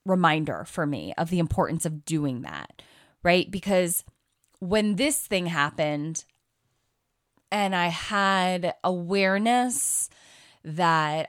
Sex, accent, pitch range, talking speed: female, American, 150-190 Hz, 105 wpm